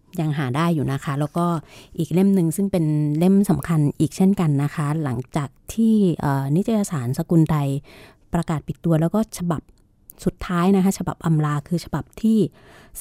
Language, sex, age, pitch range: Thai, female, 30-49, 145-175 Hz